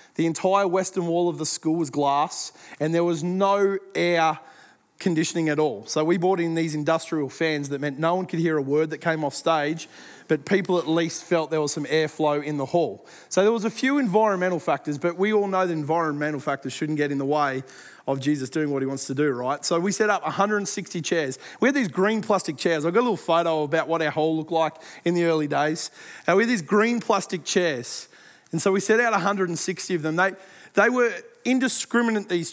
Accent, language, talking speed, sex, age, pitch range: Australian, English, 225 wpm, male, 20-39, 160-215 Hz